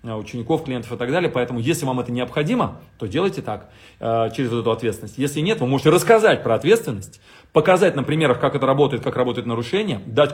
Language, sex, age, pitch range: Russian, male, 30-49, 115-150 Hz